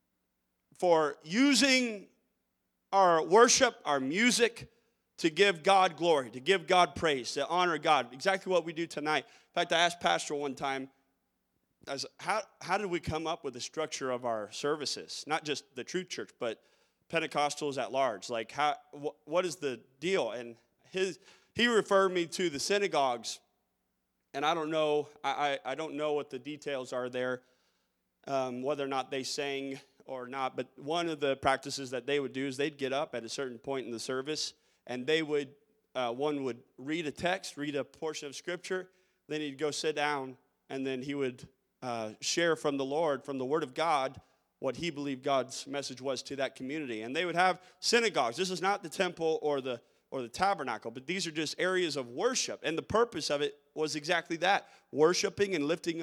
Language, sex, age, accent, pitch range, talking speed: English, male, 30-49, American, 135-175 Hz, 195 wpm